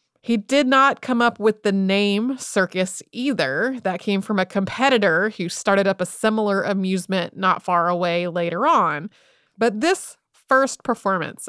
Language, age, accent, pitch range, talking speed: English, 30-49, American, 185-215 Hz, 155 wpm